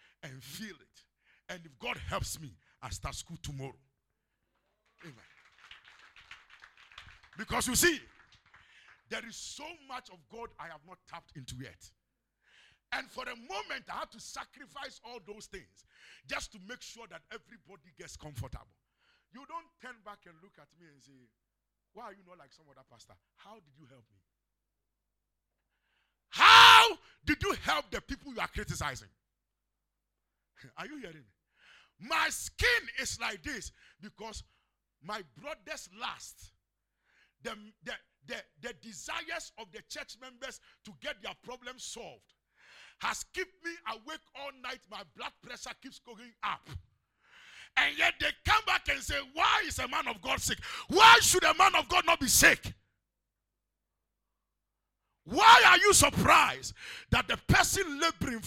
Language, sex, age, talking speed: English, male, 50-69, 155 wpm